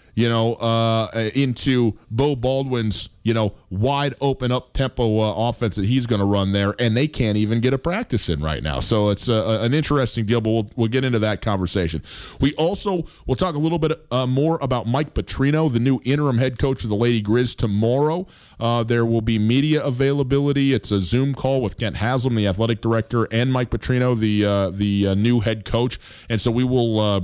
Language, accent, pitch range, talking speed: English, American, 105-135 Hz, 215 wpm